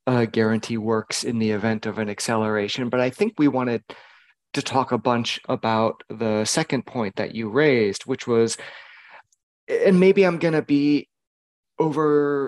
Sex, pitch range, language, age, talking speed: male, 110-145 Hz, English, 30-49, 165 wpm